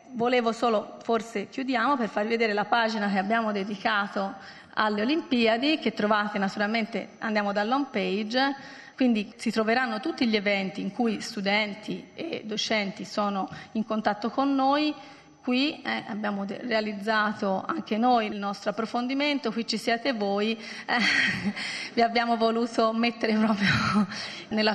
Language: Italian